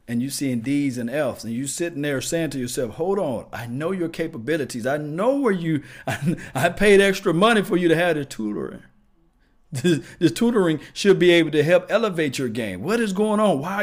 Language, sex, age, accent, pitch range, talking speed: English, male, 50-69, American, 135-185 Hz, 215 wpm